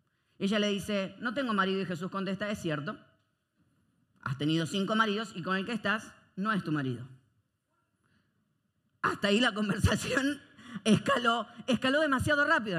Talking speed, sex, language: 150 wpm, female, Spanish